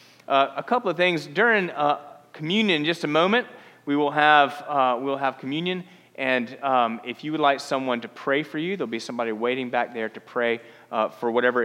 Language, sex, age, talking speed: English, male, 30-49, 205 wpm